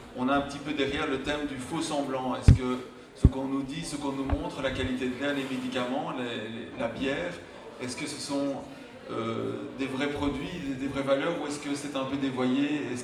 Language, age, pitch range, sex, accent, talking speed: French, 30-49, 125-140 Hz, male, French, 225 wpm